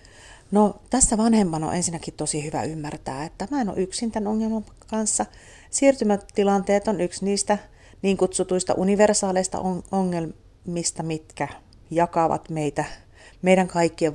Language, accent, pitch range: Finnish, native, 150-205 Hz